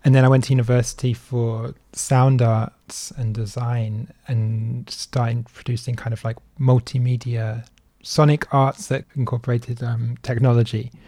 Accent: British